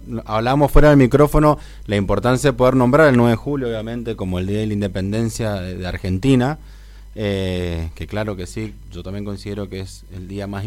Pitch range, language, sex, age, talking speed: 100-135 Hz, Spanish, male, 20-39, 195 wpm